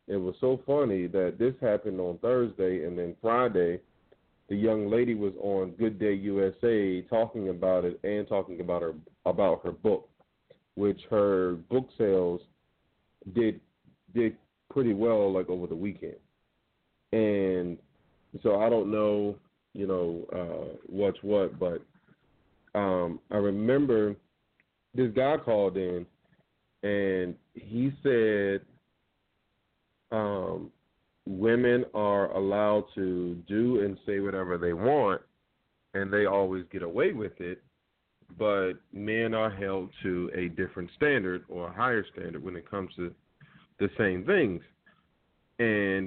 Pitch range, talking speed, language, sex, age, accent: 95-110 Hz, 130 wpm, English, male, 40-59, American